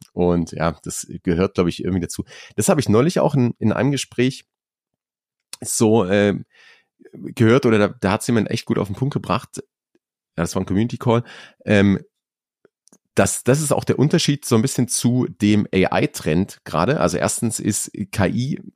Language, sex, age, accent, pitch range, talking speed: German, male, 30-49, German, 90-120 Hz, 175 wpm